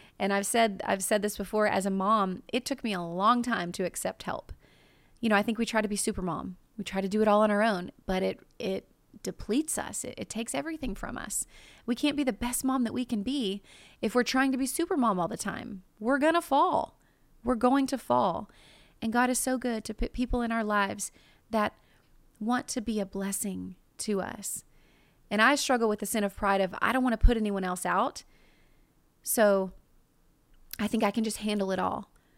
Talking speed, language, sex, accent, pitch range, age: 225 wpm, English, female, American, 205-260 Hz, 30-49